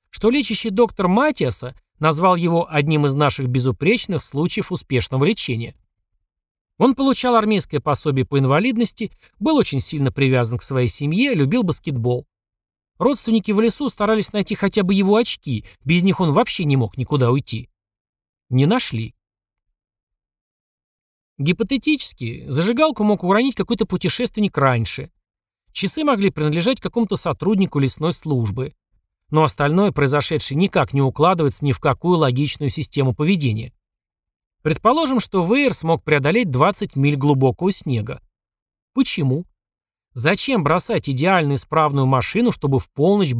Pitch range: 125-195 Hz